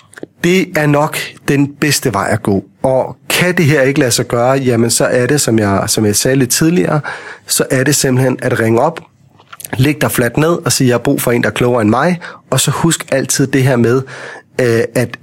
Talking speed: 235 wpm